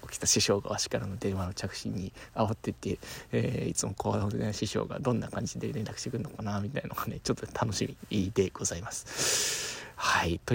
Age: 20-39